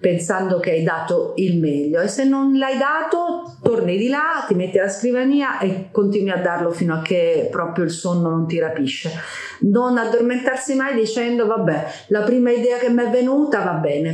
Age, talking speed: 40-59, 190 wpm